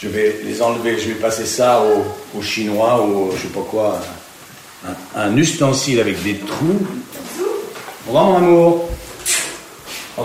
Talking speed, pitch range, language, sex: 160 wpm, 110-155 Hz, French, male